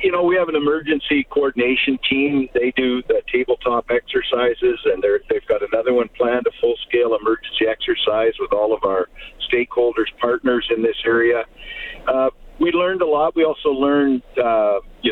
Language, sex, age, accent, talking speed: English, male, 50-69, American, 165 wpm